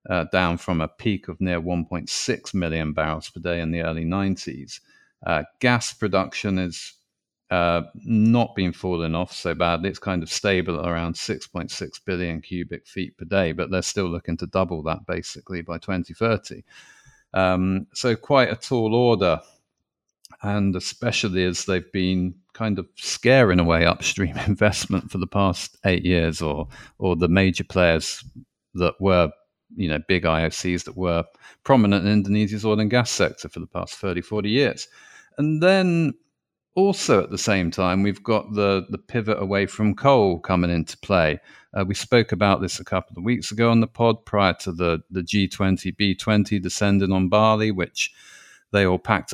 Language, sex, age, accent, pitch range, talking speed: English, male, 50-69, British, 90-110 Hz, 170 wpm